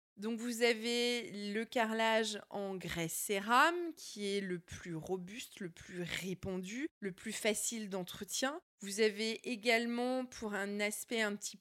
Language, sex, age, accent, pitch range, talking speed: French, female, 20-39, French, 200-260 Hz, 145 wpm